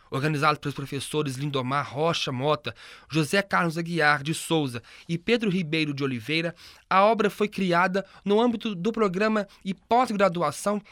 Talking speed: 145 wpm